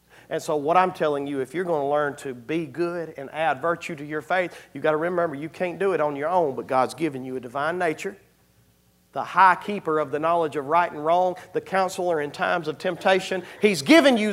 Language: English